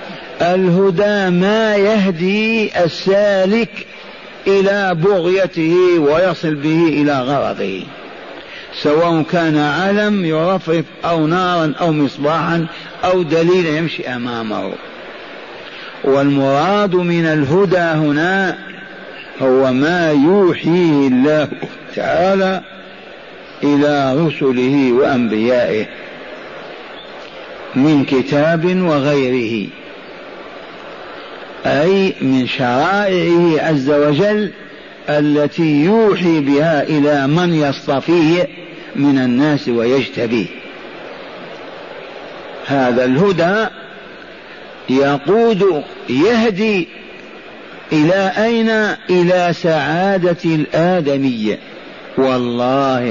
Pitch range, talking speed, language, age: 145-185 Hz, 70 wpm, Arabic, 50-69